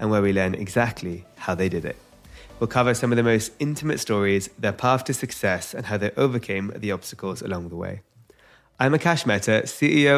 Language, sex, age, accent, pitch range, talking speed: English, male, 20-39, British, 105-145 Hz, 200 wpm